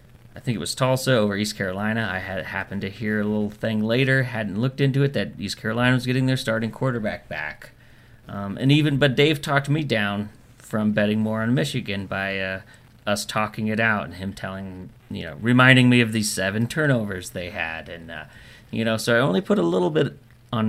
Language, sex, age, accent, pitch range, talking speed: English, male, 30-49, American, 100-120 Hz, 215 wpm